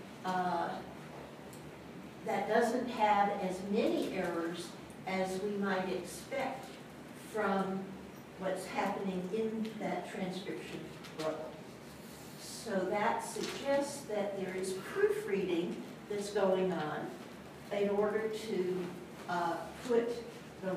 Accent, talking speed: American, 100 wpm